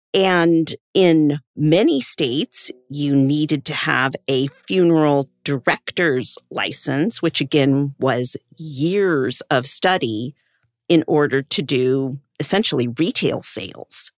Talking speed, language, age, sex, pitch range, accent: 105 wpm, English, 50-69, female, 140-170 Hz, American